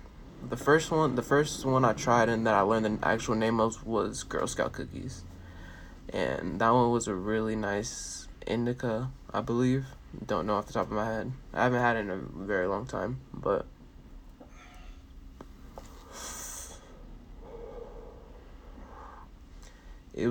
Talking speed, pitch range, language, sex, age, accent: 145 wpm, 90-120 Hz, English, male, 20-39, American